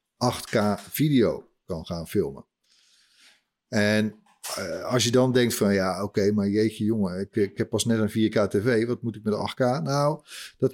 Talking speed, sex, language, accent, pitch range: 185 wpm, male, Dutch, Dutch, 105-130 Hz